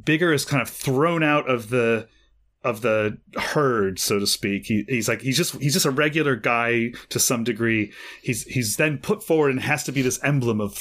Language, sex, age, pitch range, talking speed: English, male, 30-49, 115-150 Hz, 215 wpm